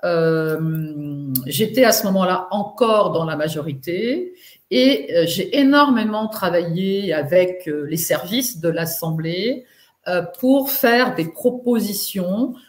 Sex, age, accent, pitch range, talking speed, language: female, 50-69, French, 170-230 Hz, 110 wpm, French